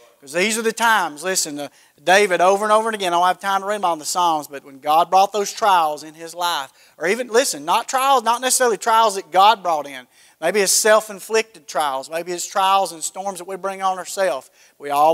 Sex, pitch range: male, 155-220 Hz